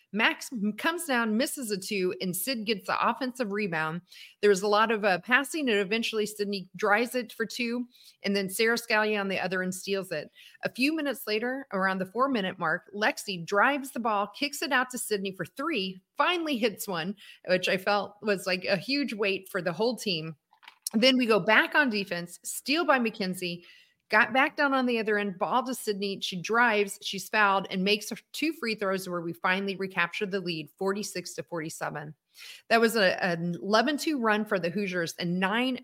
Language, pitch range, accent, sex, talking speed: English, 185-235 Hz, American, female, 200 wpm